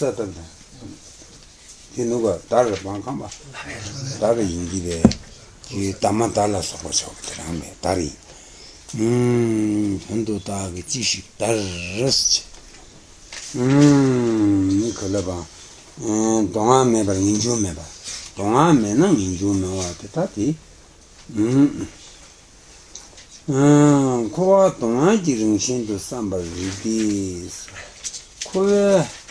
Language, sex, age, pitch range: Italian, male, 60-79, 90-115 Hz